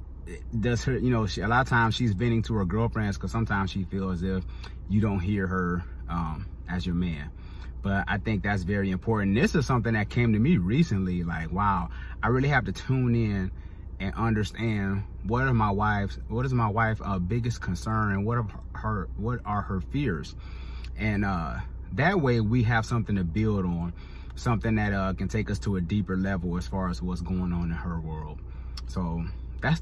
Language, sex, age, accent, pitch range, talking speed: English, male, 30-49, American, 85-110 Hz, 205 wpm